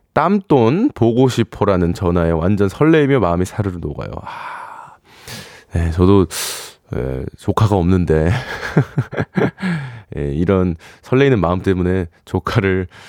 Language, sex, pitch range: Korean, male, 95-145 Hz